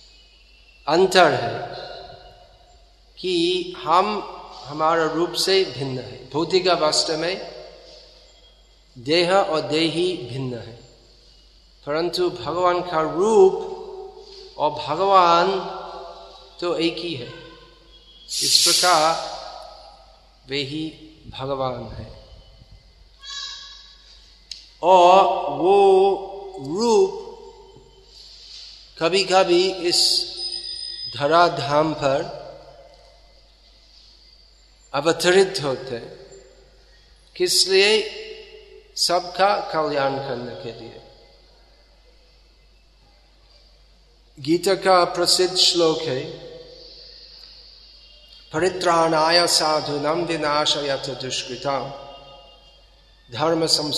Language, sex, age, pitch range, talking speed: Hindi, male, 50-69, 140-195 Hz, 65 wpm